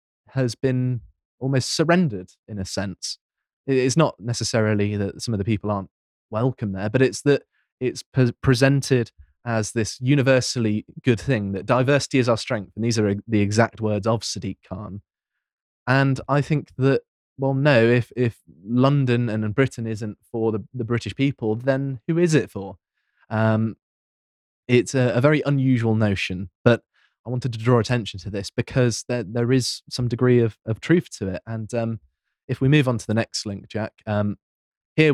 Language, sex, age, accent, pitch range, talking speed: English, male, 20-39, British, 105-135 Hz, 175 wpm